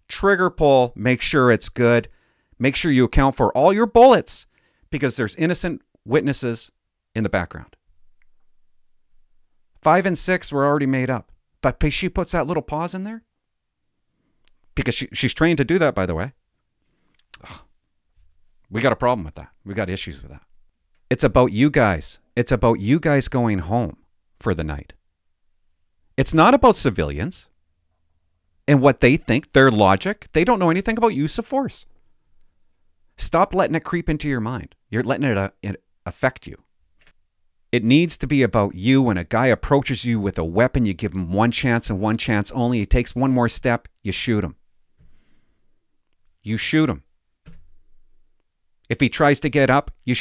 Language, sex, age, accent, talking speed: English, male, 40-59, American, 170 wpm